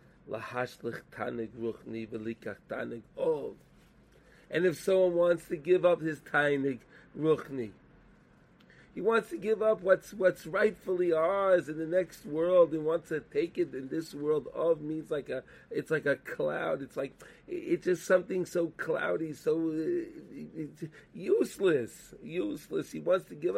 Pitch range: 125-180 Hz